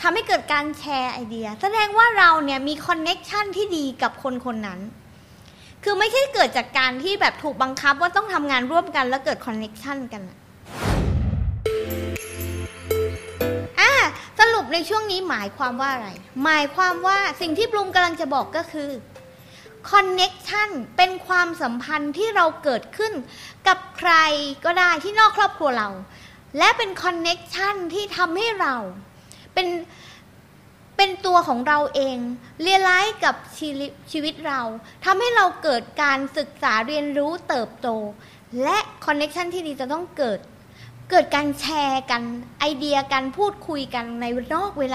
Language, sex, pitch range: Thai, female, 260-370 Hz